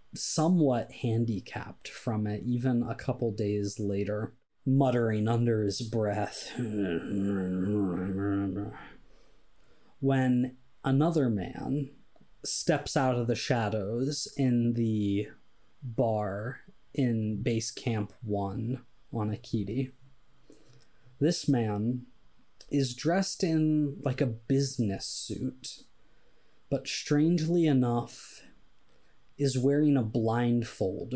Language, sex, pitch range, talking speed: English, male, 110-135 Hz, 90 wpm